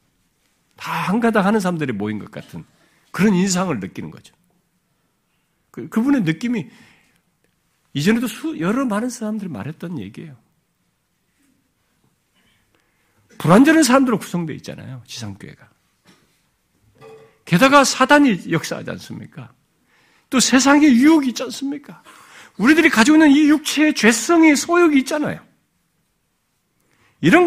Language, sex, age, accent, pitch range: Korean, male, 50-69, native, 175-280 Hz